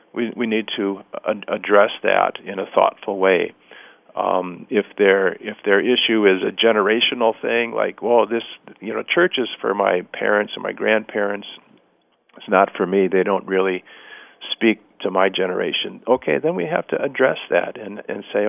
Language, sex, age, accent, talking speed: English, male, 50-69, American, 170 wpm